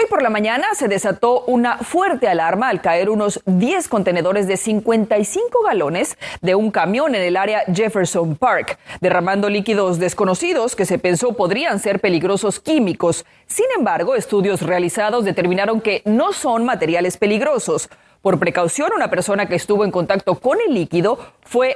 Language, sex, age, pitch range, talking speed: Spanish, female, 30-49, 185-235 Hz, 155 wpm